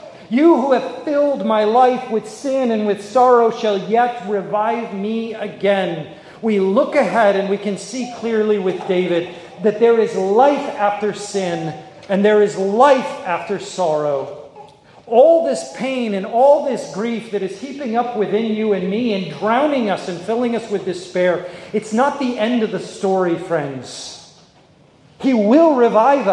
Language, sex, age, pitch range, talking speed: English, male, 40-59, 180-235 Hz, 165 wpm